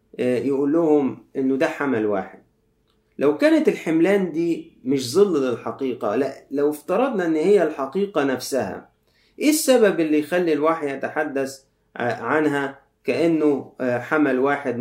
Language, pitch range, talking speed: Arabic, 130-170 Hz, 120 wpm